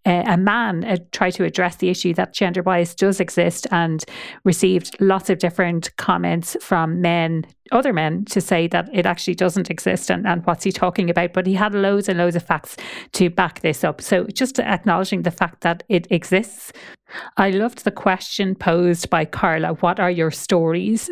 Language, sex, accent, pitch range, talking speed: English, female, Irish, 175-200 Hz, 190 wpm